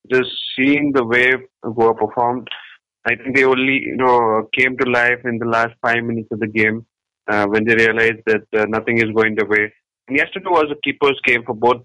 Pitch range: 115-130 Hz